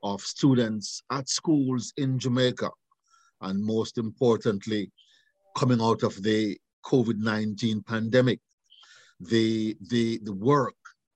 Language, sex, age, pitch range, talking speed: English, male, 50-69, 105-130 Hz, 100 wpm